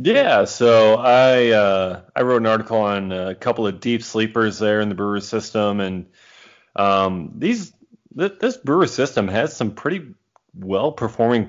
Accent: American